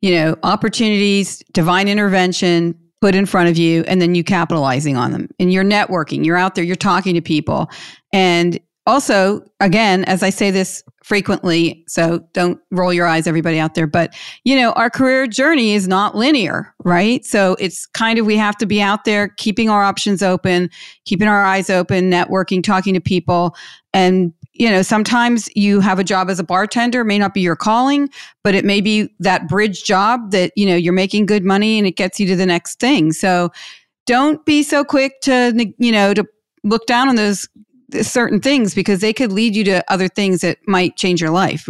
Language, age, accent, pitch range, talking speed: English, 40-59, American, 175-210 Hz, 200 wpm